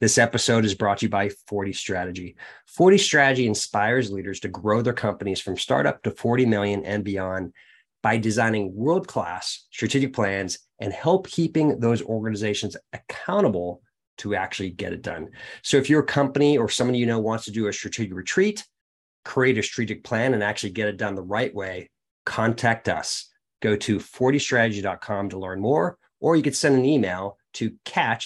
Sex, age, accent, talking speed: male, 30-49, American, 175 wpm